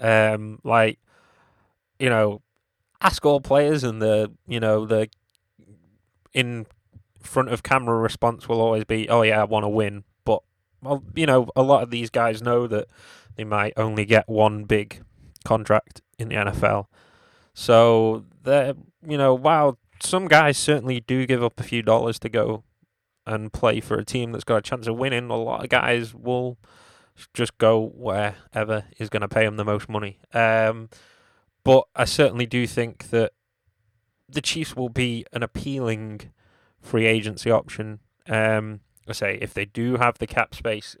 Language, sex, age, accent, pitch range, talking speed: English, male, 20-39, British, 105-120 Hz, 170 wpm